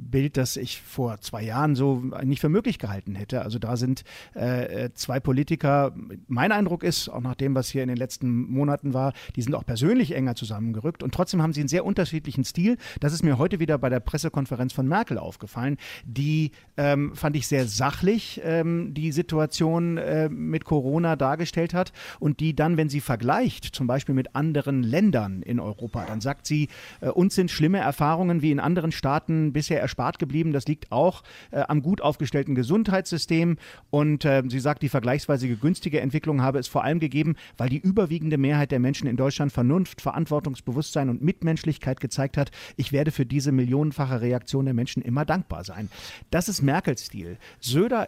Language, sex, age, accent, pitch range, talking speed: German, male, 50-69, German, 130-165 Hz, 185 wpm